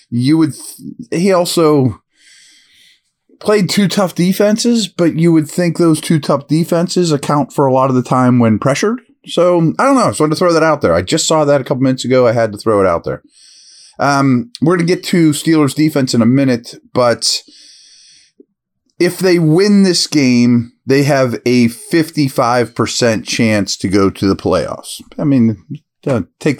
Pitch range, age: 120-170 Hz, 30-49